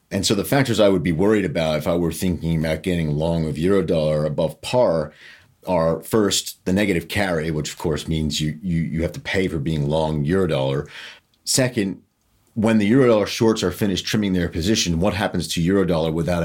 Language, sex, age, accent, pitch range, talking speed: English, male, 40-59, American, 80-100 Hz, 210 wpm